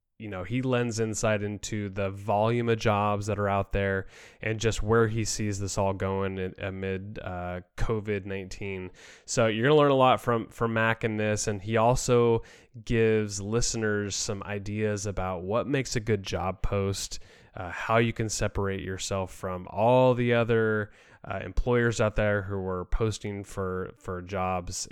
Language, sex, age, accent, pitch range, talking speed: English, male, 20-39, American, 95-120 Hz, 170 wpm